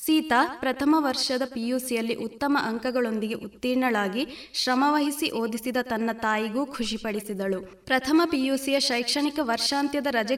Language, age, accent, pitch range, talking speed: Kannada, 20-39, native, 230-275 Hz, 100 wpm